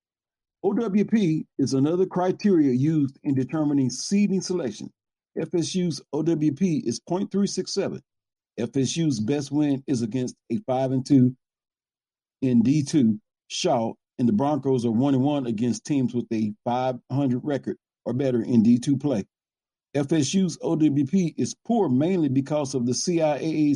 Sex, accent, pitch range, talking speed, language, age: male, American, 125-160 Hz, 125 wpm, English, 50-69